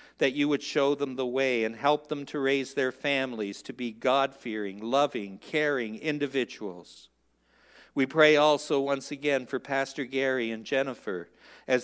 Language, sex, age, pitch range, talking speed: English, male, 60-79, 110-140 Hz, 155 wpm